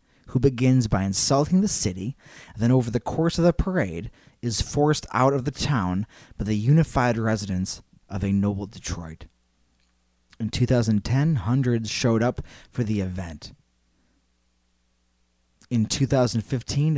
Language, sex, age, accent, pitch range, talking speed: English, male, 20-39, American, 95-130 Hz, 135 wpm